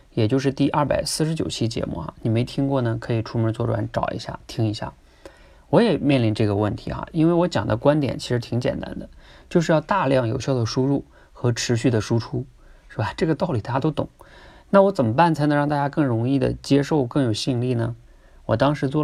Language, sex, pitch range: Chinese, male, 115-150 Hz